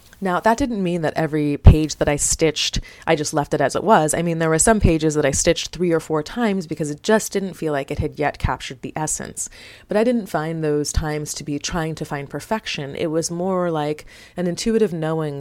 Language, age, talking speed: English, 30-49, 240 wpm